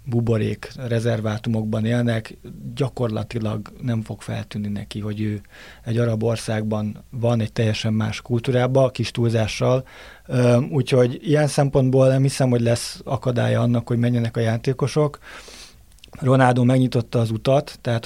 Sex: male